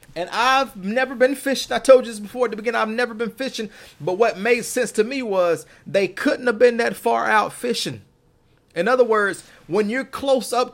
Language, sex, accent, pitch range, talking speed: English, male, American, 180-245 Hz, 220 wpm